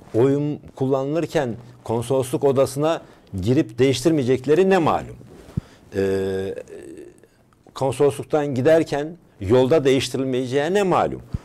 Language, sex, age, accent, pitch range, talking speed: English, male, 60-79, Turkish, 95-140 Hz, 80 wpm